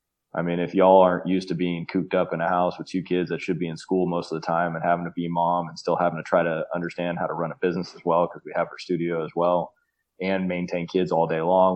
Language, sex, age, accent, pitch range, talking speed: English, male, 20-39, American, 85-95 Hz, 290 wpm